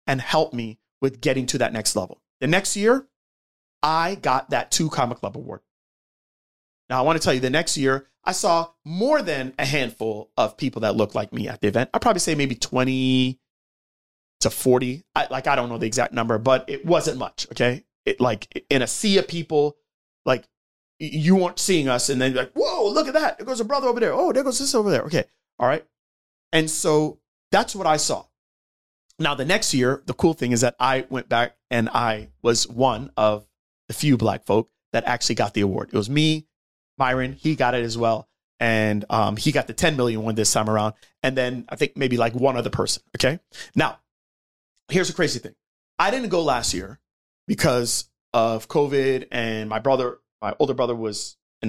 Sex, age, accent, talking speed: male, 30-49, American, 210 wpm